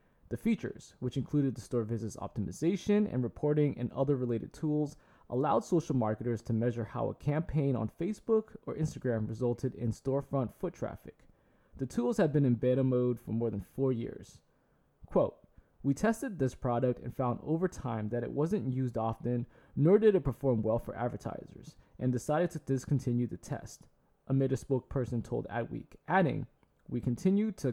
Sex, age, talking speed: male, 20-39, 175 wpm